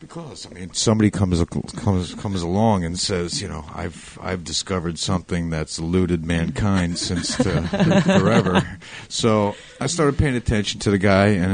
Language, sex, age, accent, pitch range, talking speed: English, male, 50-69, American, 85-100 Hz, 155 wpm